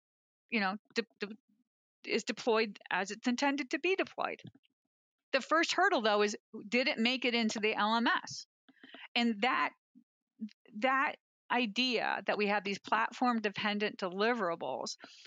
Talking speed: 135 wpm